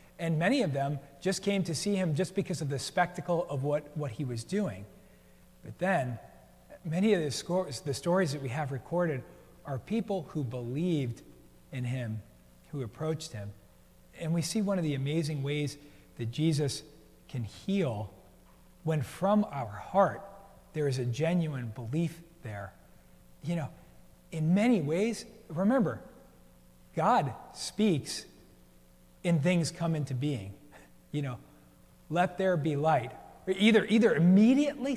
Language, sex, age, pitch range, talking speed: English, male, 40-59, 120-175 Hz, 145 wpm